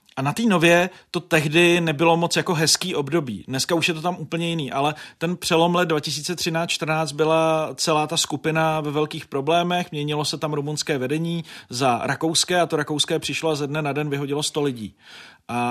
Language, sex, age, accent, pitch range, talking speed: Czech, male, 30-49, native, 120-155 Hz, 195 wpm